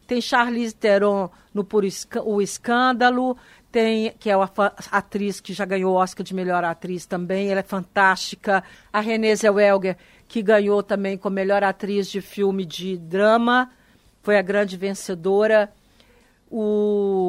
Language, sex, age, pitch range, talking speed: Portuguese, female, 60-79, 195-225 Hz, 140 wpm